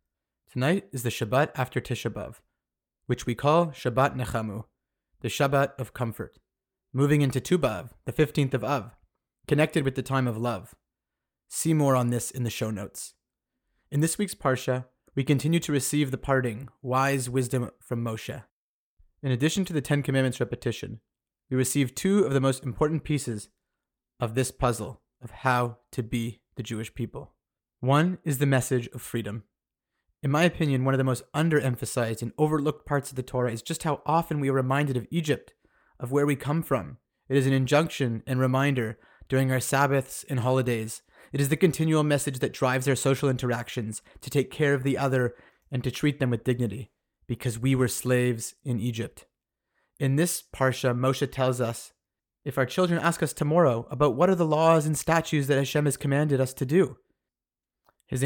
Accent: American